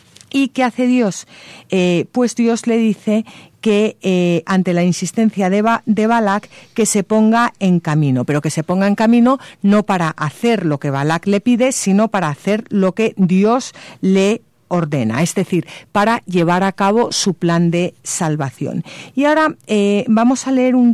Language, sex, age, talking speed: Spanish, female, 40-59, 180 wpm